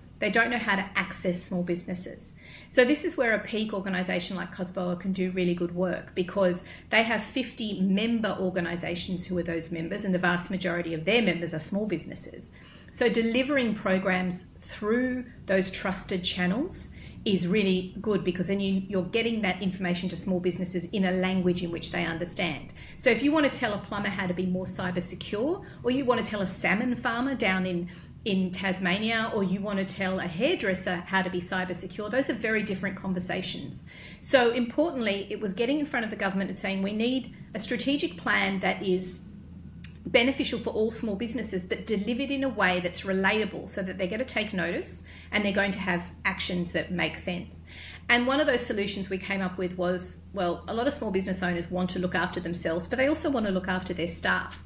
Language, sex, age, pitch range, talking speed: English, female, 40-59, 180-220 Hz, 210 wpm